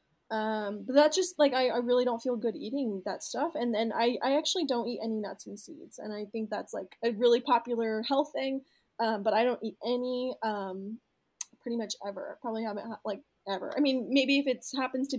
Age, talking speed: 20-39, 220 wpm